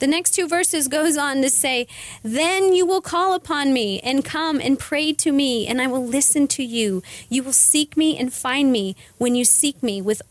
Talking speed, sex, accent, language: 220 wpm, female, American, English